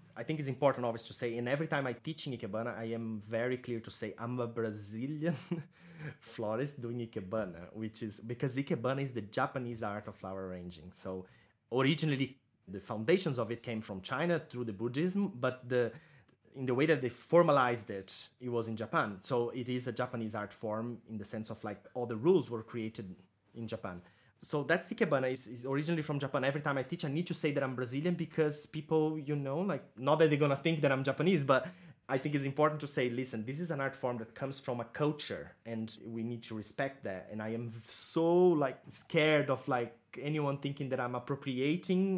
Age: 20-39